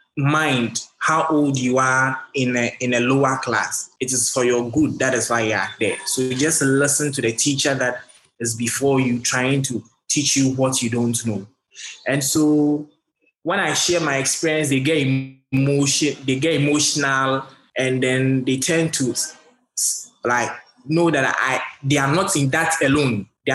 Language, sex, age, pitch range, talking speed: English, male, 20-39, 125-150 Hz, 180 wpm